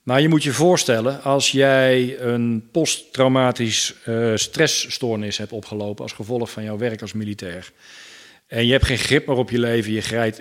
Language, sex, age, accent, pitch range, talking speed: Dutch, male, 40-59, Dutch, 105-130 Hz, 185 wpm